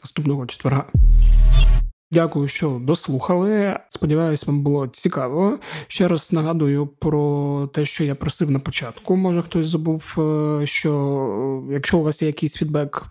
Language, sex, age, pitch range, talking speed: Ukrainian, male, 20-39, 140-165 Hz, 135 wpm